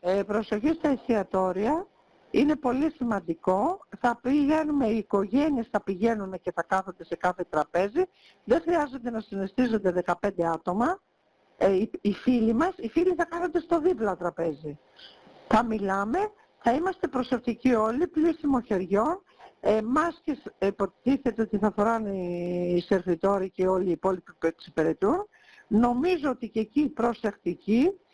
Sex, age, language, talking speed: female, 60-79, Greek, 140 wpm